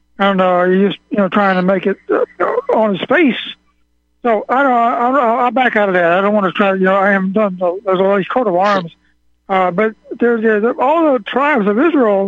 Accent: American